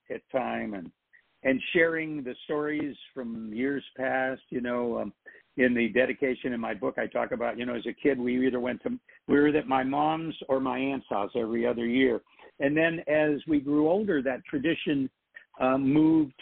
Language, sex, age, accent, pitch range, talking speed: English, male, 60-79, American, 120-150 Hz, 195 wpm